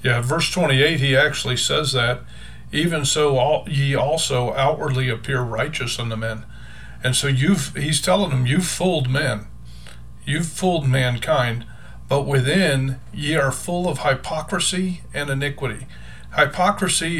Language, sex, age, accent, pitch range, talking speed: English, male, 40-59, American, 125-155 Hz, 135 wpm